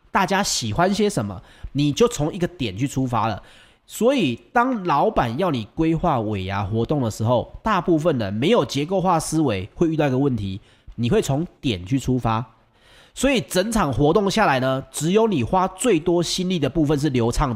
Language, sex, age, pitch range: Chinese, male, 30-49, 115-165 Hz